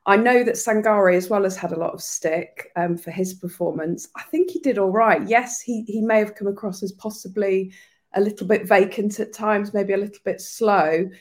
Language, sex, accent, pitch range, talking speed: English, female, British, 180-225 Hz, 225 wpm